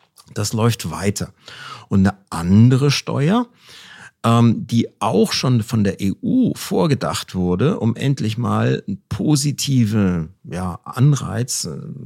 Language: German